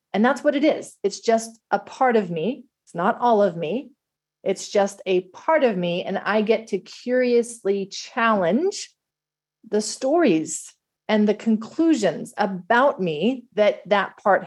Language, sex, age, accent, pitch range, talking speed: English, female, 40-59, American, 190-235 Hz, 160 wpm